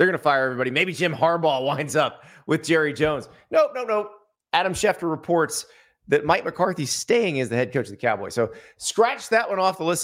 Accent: American